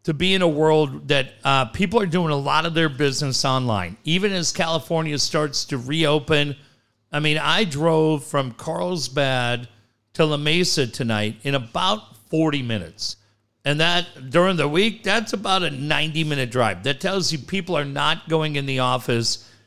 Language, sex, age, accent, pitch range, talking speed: English, male, 50-69, American, 125-170 Hz, 170 wpm